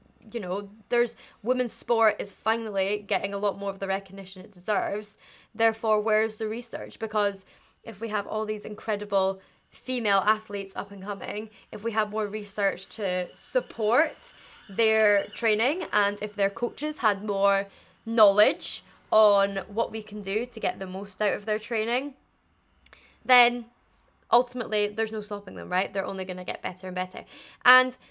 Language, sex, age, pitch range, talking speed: English, female, 20-39, 195-230 Hz, 160 wpm